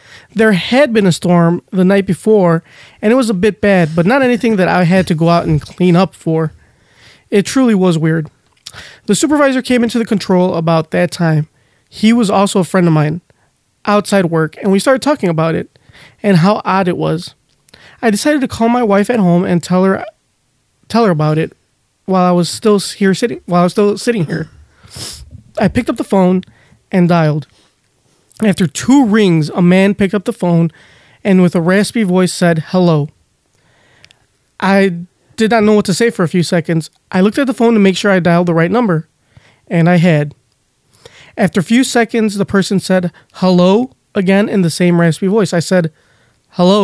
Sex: male